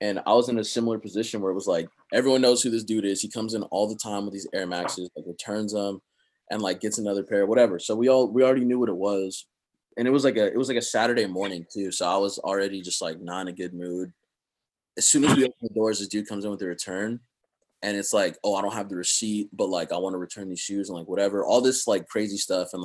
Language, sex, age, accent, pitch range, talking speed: English, male, 20-39, American, 100-120 Hz, 285 wpm